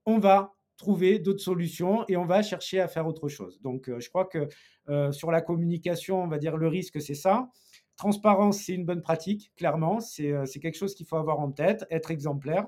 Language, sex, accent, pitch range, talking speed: French, male, French, 155-185 Hz, 210 wpm